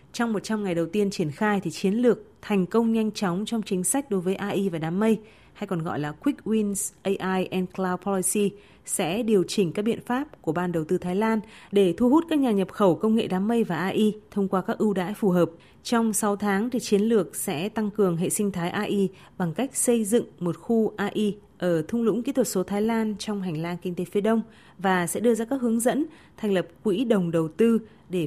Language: Vietnamese